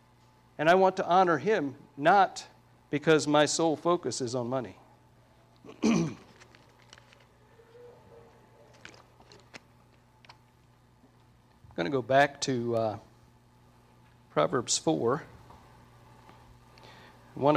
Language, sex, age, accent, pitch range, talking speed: English, male, 50-69, American, 125-160 Hz, 85 wpm